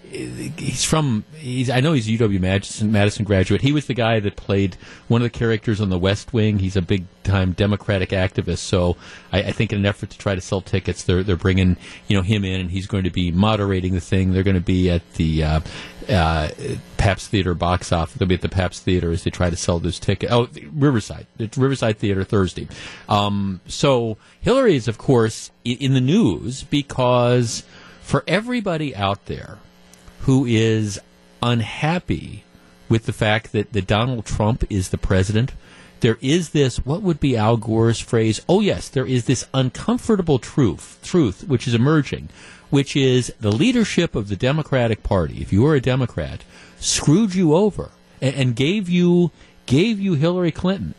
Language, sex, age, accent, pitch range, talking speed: English, male, 40-59, American, 95-140 Hz, 190 wpm